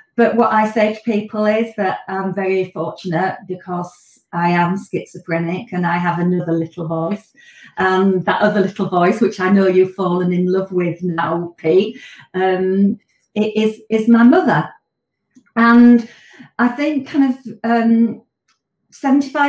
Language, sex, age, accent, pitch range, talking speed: English, female, 40-59, British, 180-225 Hz, 145 wpm